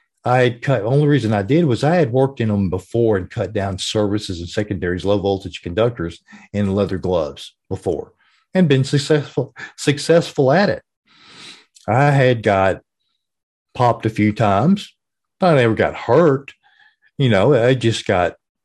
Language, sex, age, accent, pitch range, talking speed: English, male, 50-69, American, 90-115 Hz, 155 wpm